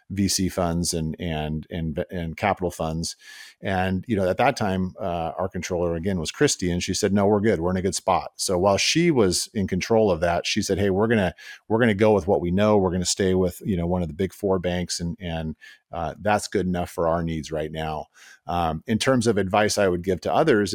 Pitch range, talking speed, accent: 85-105 Hz, 250 wpm, American